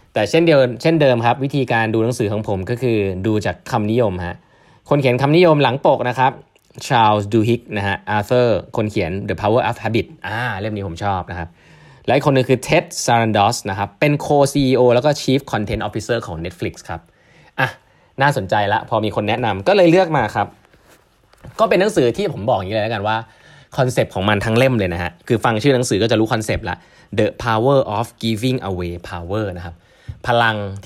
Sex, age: male, 20-39